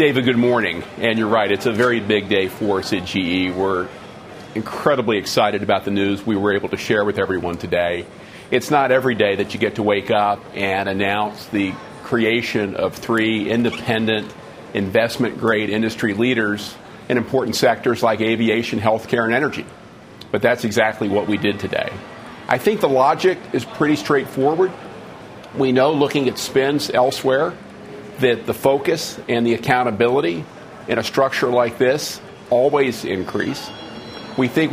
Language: English